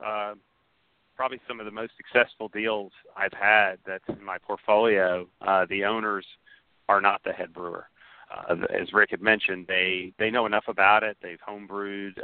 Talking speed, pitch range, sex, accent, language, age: 175 wpm, 90-105 Hz, male, American, English, 40-59